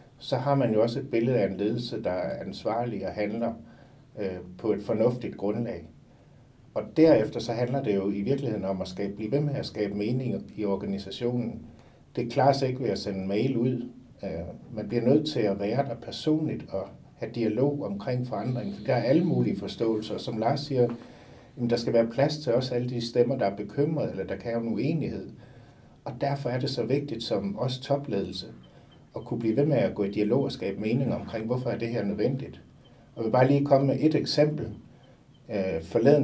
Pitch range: 105-135 Hz